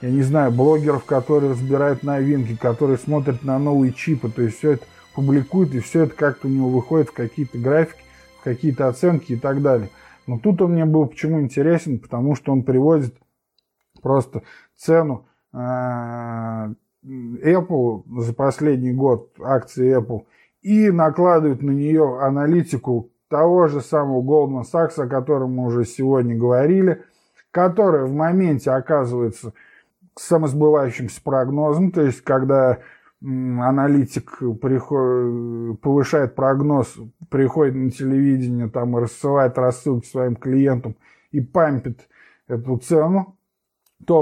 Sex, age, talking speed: male, 20-39, 135 wpm